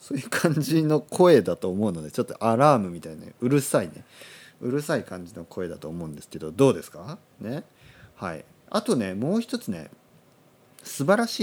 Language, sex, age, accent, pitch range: Japanese, male, 40-59, native, 100-145 Hz